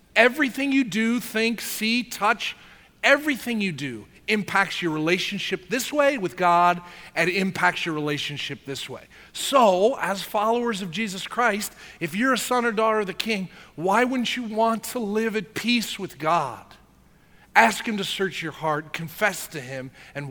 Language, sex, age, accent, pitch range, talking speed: English, male, 40-59, American, 150-215 Hz, 170 wpm